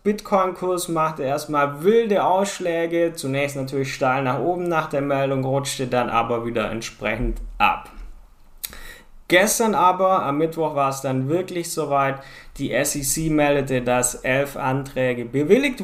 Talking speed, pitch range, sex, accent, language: 135 wpm, 130-170 Hz, male, German, German